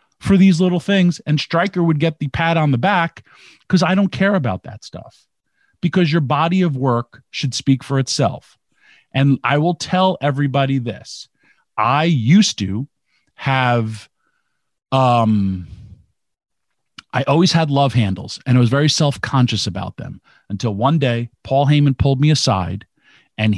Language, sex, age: English, male, 40-59